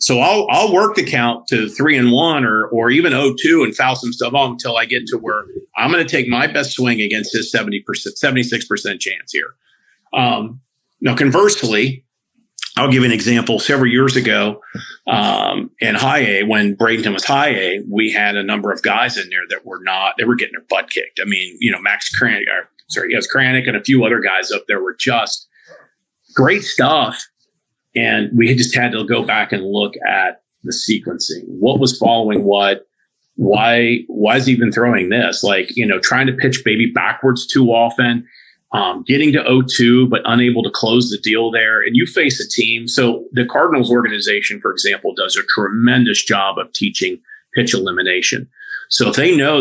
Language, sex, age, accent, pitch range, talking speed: English, male, 40-59, American, 115-135 Hz, 200 wpm